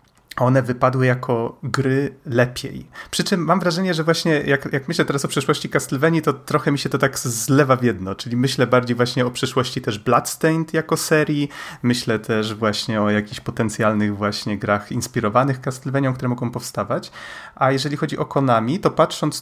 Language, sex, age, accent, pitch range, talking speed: Polish, male, 30-49, native, 110-130 Hz, 175 wpm